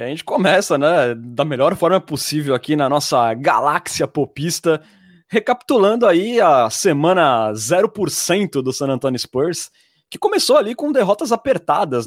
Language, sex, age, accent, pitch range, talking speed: Portuguese, male, 20-39, Brazilian, 150-215 Hz, 140 wpm